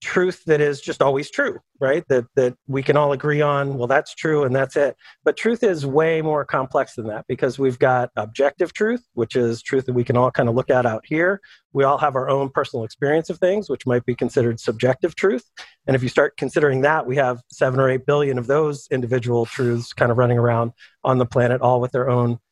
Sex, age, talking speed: male, 40-59, 235 wpm